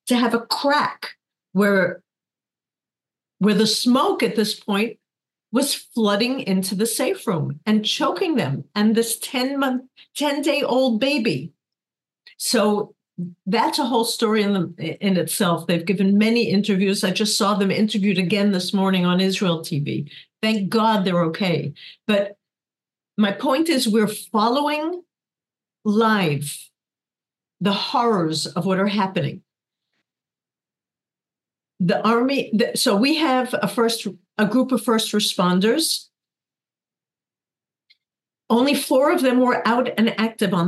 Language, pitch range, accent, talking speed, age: English, 190-250 Hz, American, 135 wpm, 50-69